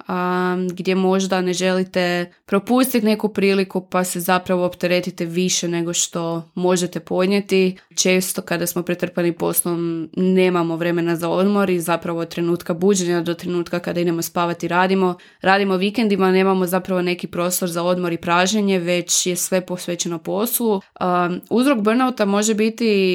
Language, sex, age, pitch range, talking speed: Croatian, female, 20-39, 175-190 Hz, 150 wpm